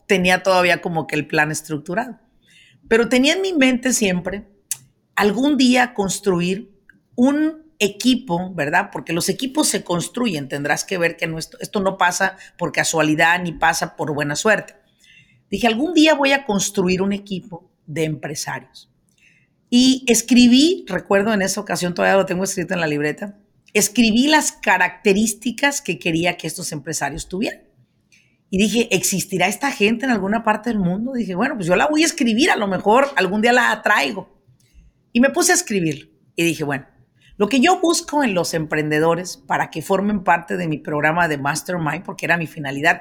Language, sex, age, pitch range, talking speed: Spanish, female, 40-59, 165-235 Hz, 175 wpm